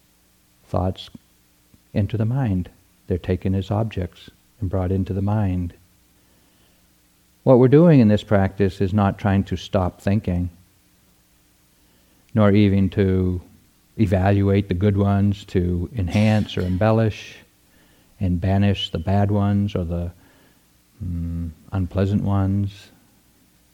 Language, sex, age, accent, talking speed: English, male, 60-79, American, 115 wpm